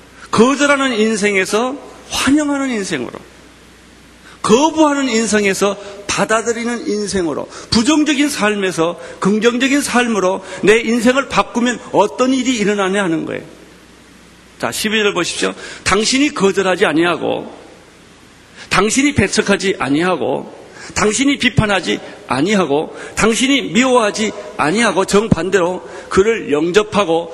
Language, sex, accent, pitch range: Korean, male, native, 160-235 Hz